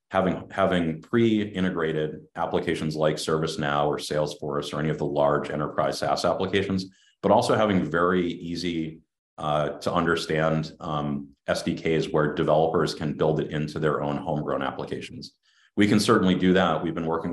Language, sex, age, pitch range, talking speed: English, male, 30-49, 75-90 Hz, 150 wpm